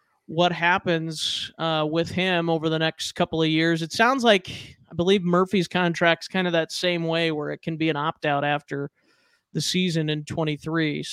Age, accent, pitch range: 30-49, American, 160-185 Hz